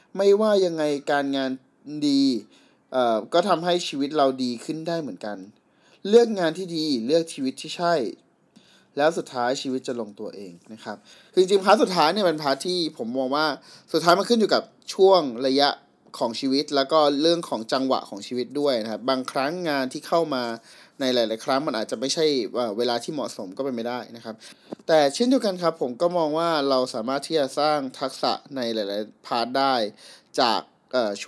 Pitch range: 125-170 Hz